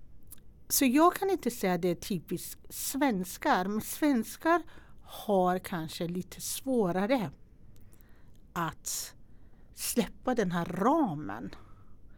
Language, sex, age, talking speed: Swedish, female, 60-79, 105 wpm